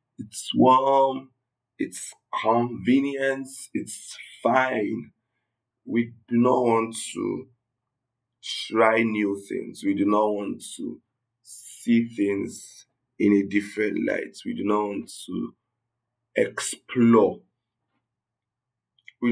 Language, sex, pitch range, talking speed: English, male, 110-125 Hz, 100 wpm